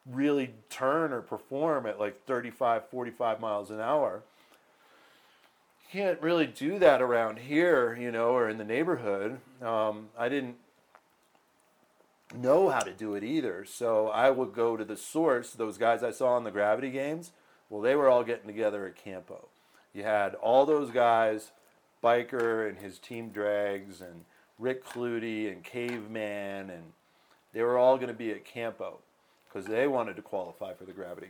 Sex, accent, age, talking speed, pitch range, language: male, American, 40-59, 165 wpm, 100-120 Hz, English